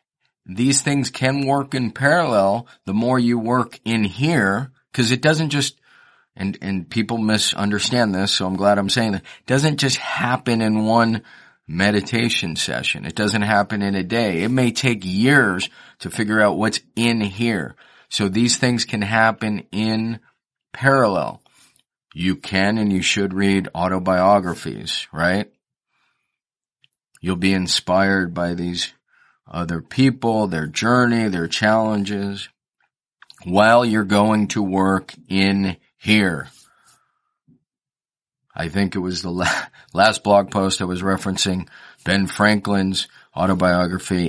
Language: English